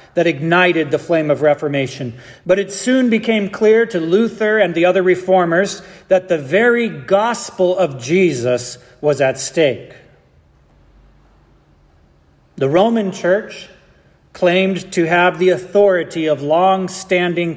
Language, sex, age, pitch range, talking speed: English, male, 40-59, 145-200 Hz, 125 wpm